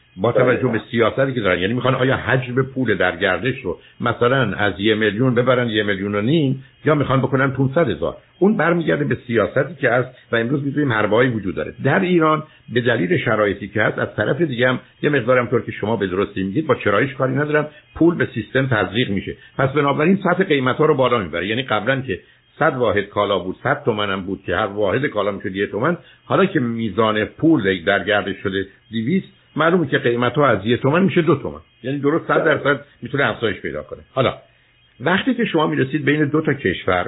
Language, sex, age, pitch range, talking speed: Persian, male, 60-79, 105-145 Hz, 185 wpm